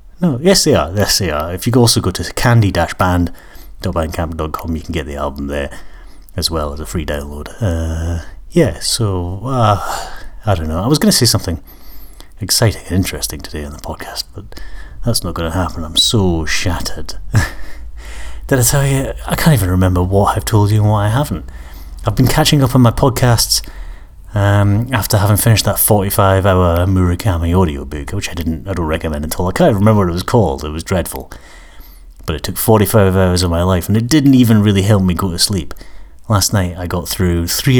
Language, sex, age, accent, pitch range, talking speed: English, male, 30-49, British, 80-105 Hz, 200 wpm